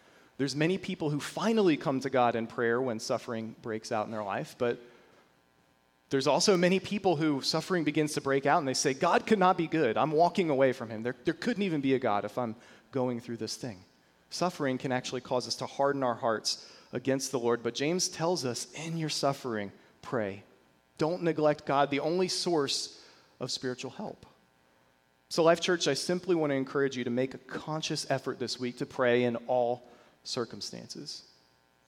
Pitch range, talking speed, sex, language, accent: 125-175 Hz, 195 wpm, male, English, American